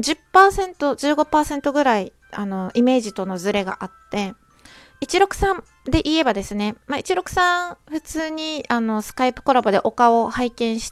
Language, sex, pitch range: Japanese, female, 215-305 Hz